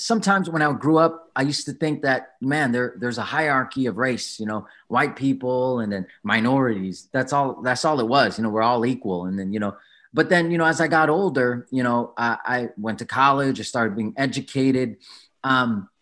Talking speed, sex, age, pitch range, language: 220 wpm, male, 30-49, 125-165 Hz, Filipino